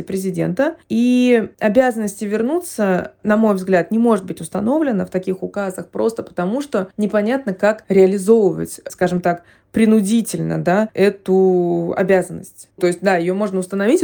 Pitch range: 180-235 Hz